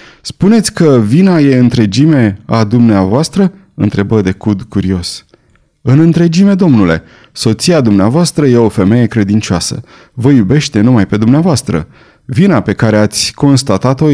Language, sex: Romanian, male